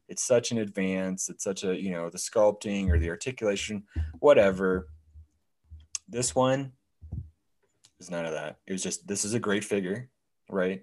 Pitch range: 85-100 Hz